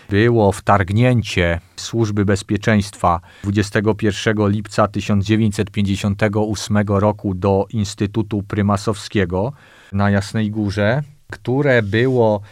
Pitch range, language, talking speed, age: 100-125 Hz, Polish, 75 wpm, 40-59